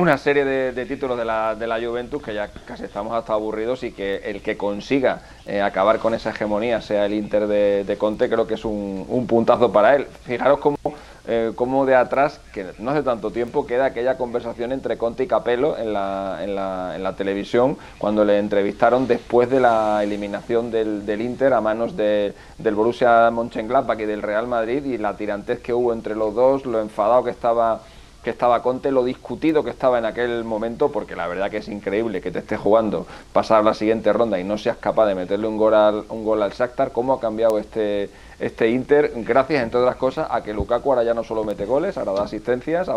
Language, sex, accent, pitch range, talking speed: Spanish, male, Spanish, 105-120 Hz, 215 wpm